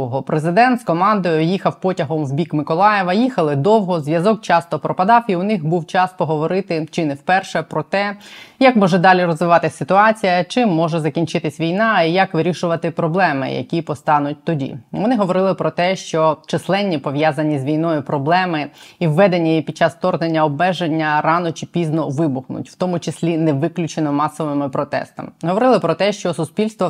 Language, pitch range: Ukrainian, 155-190 Hz